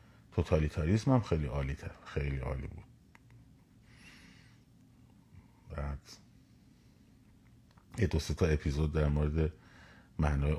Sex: male